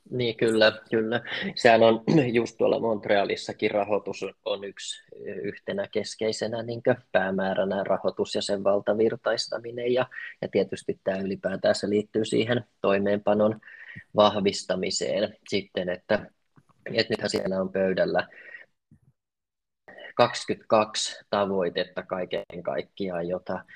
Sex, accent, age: male, native, 20-39